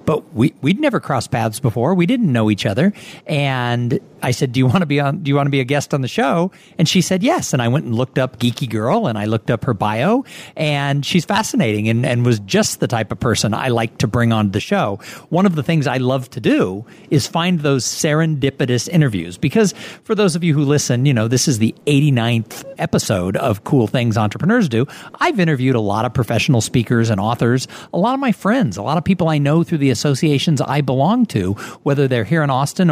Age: 50-69